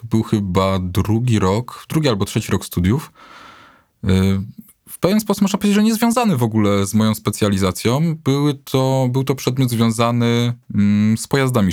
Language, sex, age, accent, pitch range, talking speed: Polish, male, 20-39, native, 95-120 Hz, 160 wpm